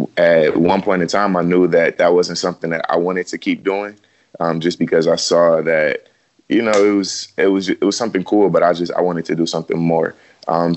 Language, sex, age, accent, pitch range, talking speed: English, male, 20-39, American, 85-90 Hz, 240 wpm